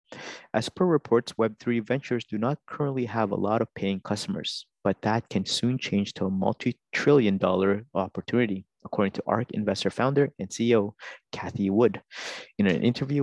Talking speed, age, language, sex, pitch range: 165 wpm, 30-49, English, male, 100-135 Hz